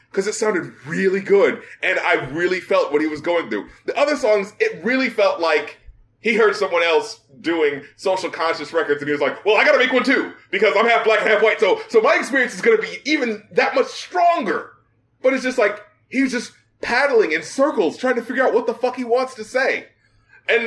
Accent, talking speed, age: American, 230 wpm, 20-39